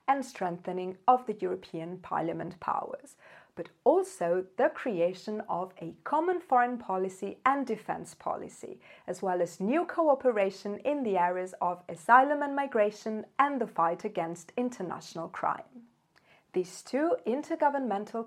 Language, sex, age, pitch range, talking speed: English, female, 40-59, 185-250 Hz, 130 wpm